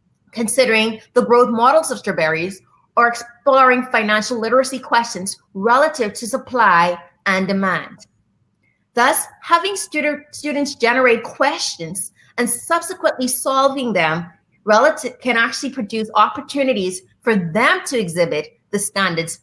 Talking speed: 110 wpm